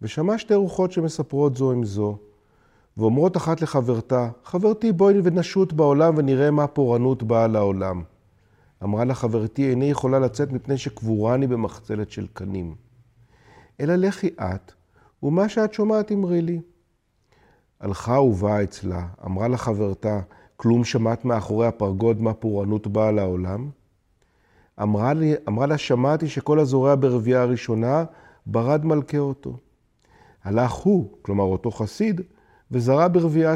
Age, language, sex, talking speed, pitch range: 50-69, Hebrew, male, 120 wpm, 110-150 Hz